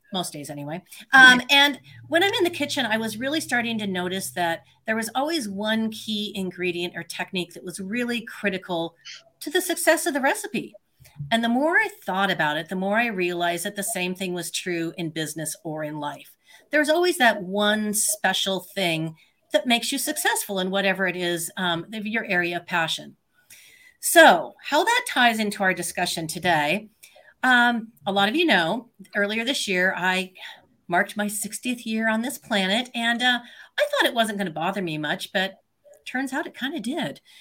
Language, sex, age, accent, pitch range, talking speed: English, female, 40-59, American, 175-250 Hz, 190 wpm